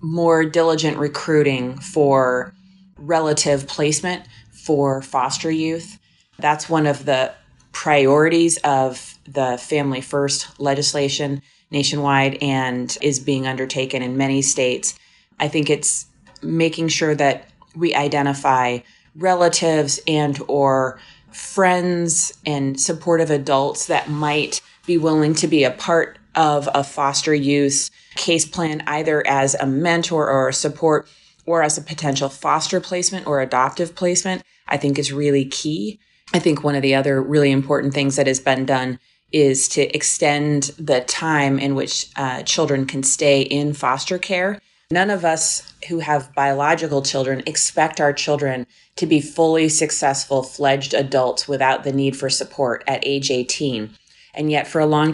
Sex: female